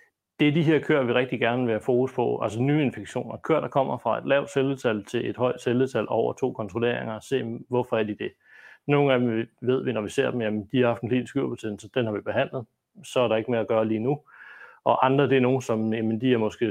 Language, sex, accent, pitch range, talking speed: Danish, male, native, 115-135 Hz, 265 wpm